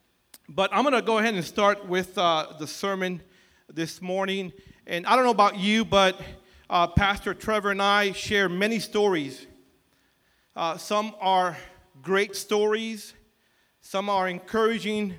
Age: 40-59